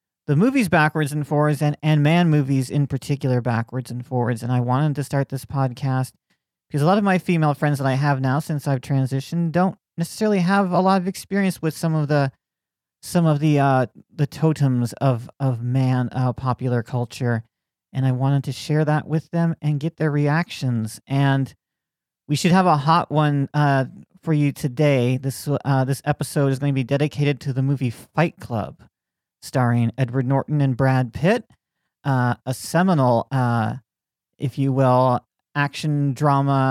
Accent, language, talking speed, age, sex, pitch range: American, English, 185 wpm, 40-59, male, 130-155 Hz